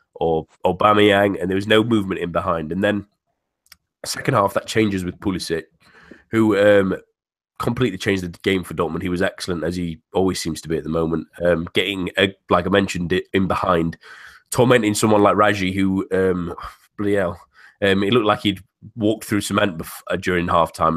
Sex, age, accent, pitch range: male, 20-39, British, 90-105 Hz